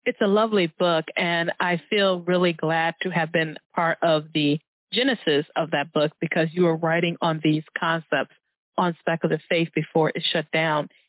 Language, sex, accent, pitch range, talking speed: English, female, American, 165-195 Hz, 180 wpm